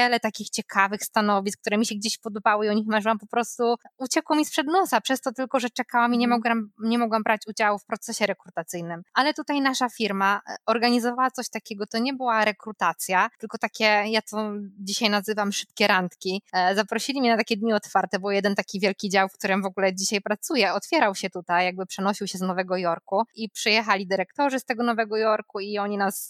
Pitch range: 200-245 Hz